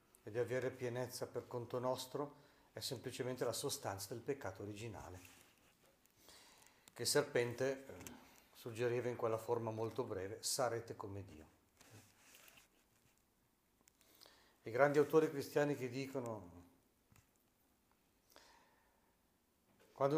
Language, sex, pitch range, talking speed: Italian, male, 115-145 Hz, 95 wpm